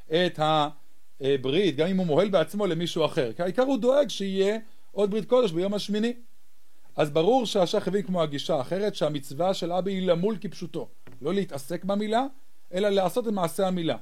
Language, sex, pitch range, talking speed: English, male, 150-210 Hz, 165 wpm